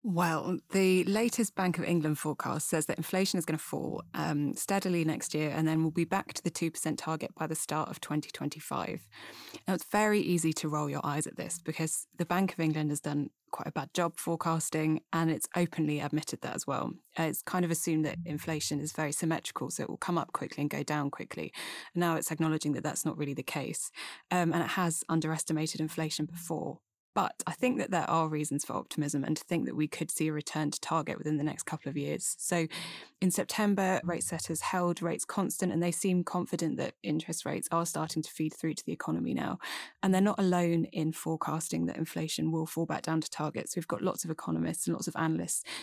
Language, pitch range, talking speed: English, 155-175 Hz, 220 wpm